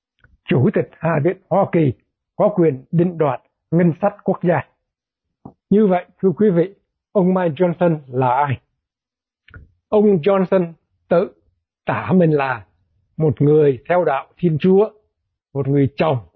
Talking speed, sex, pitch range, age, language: 145 wpm, male, 145-190 Hz, 60-79, Vietnamese